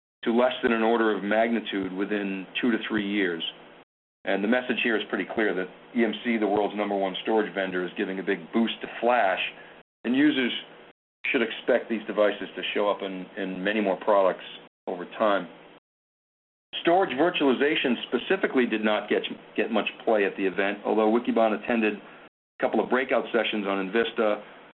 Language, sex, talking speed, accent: English, male, 175 wpm, American